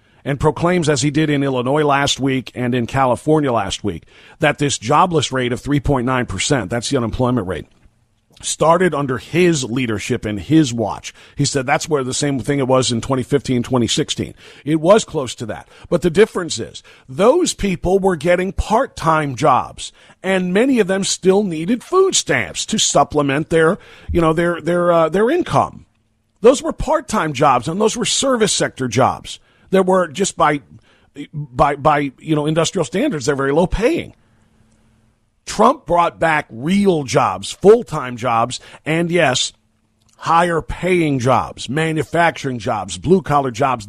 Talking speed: 160 wpm